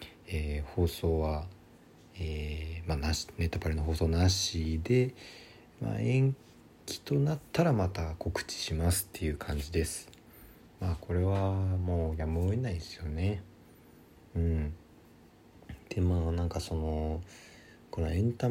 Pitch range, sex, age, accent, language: 85-120 Hz, male, 40-59, native, Japanese